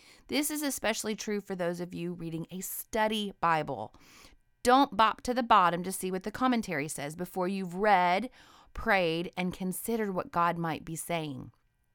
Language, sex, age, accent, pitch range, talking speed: English, female, 30-49, American, 170-220 Hz, 170 wpm